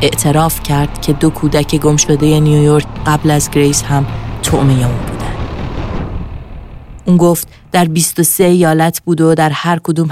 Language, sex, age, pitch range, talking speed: Persian, female, 30-49, 140-160 Hz, 150 wpm